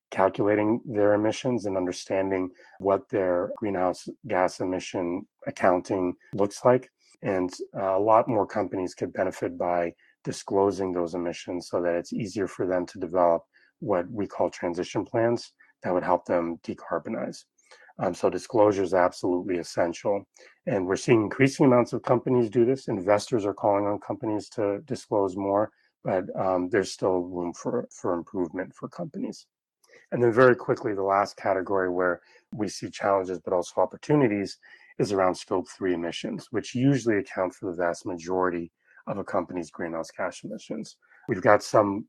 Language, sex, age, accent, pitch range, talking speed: English, male, 30-49, American, 90-110 Hz, 155 wpm